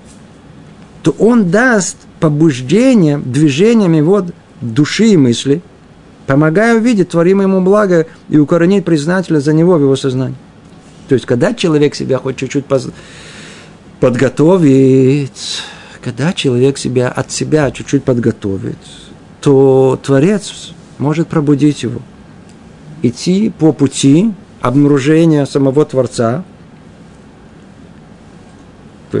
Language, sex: Russian, male